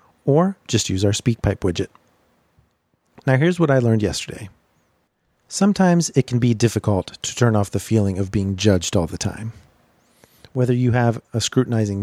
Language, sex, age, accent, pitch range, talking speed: English, male, 40-59, American, 100-135 Hz, 165 wpm